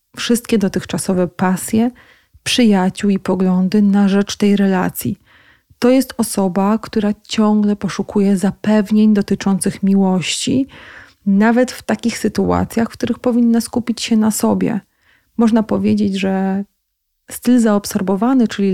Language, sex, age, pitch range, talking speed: Polish, female, 30-49, 195-225 Hz, 115 wpm